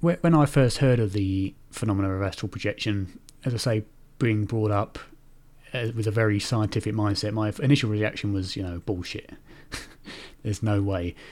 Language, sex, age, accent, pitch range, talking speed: English, male, 30-49, British, 105-130 Hz, 165 wpm